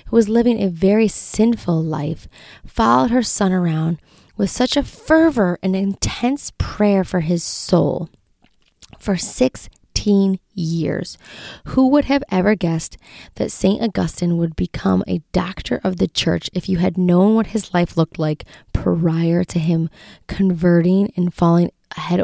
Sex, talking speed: female, 150 wpm